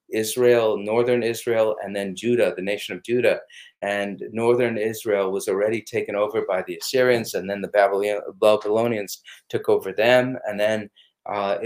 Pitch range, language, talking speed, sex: 105-125 Hz, English, 155 wpm, male